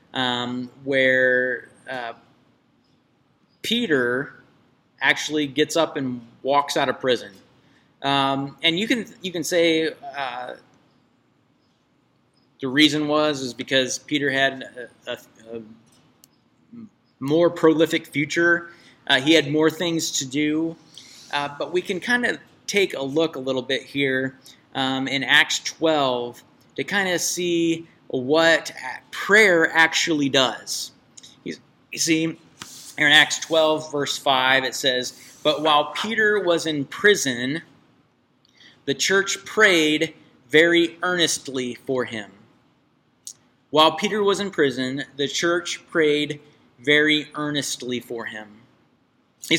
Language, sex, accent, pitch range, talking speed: English, male, American, 130-165 Hz, 120 wpm